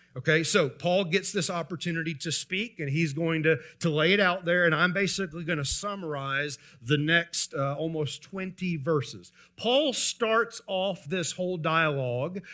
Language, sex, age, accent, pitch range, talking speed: English, male, 40-59, American, 170-255 Hz, 165 wpm